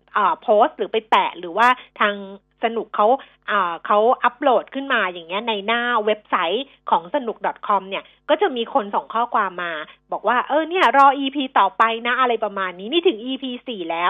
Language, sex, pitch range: Thai, female, 190-245 Hz